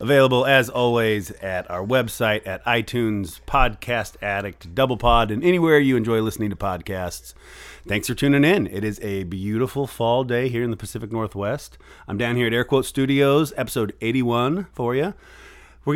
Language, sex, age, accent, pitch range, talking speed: English, male, 30-49, American, 100-125 Hz, 165 wpm